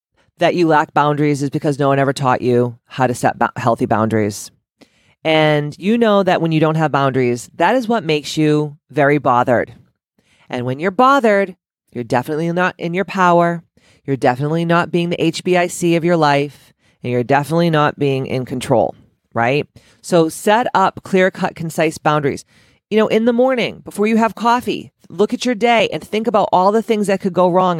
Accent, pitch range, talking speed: American, 150-195 Hz, 190 wpm